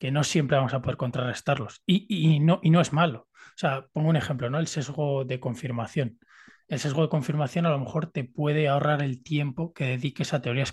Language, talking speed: Spanish, 225 wpm